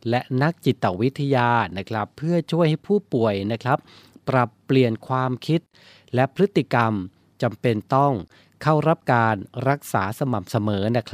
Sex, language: male, Thai